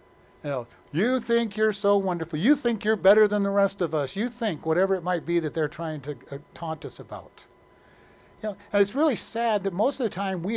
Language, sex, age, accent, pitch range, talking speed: English, male, 50-69, American, 155-200 Hz, 240 wpm